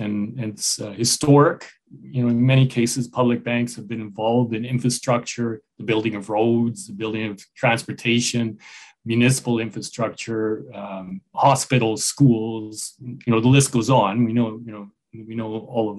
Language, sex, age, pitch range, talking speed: English, male, 30-49, 115-135 Hz, 155 wpm